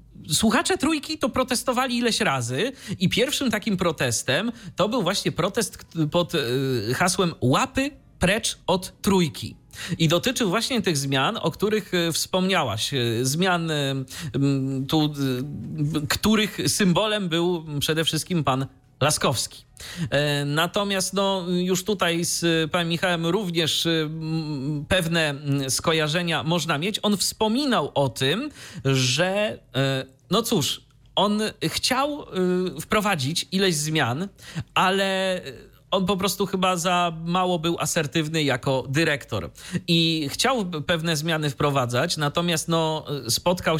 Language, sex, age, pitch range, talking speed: Polish, male, 40-59, 135-185 Hz, 110 wpm